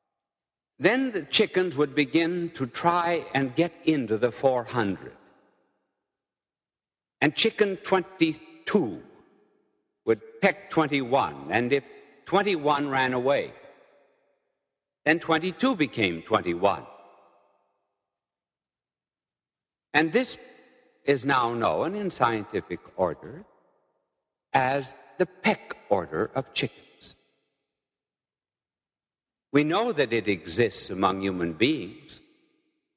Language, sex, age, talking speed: English, male, 60-79, 90 wpm